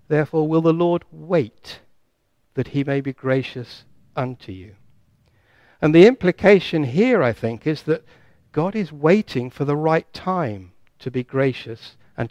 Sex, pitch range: male, 120-160 Hz